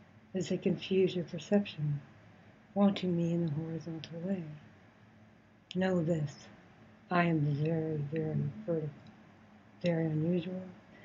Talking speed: 110 wpm